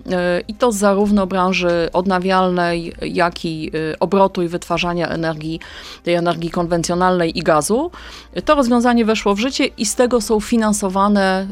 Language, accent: Polish, native